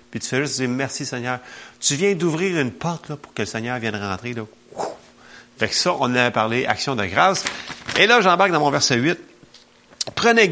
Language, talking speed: French, 205 wpm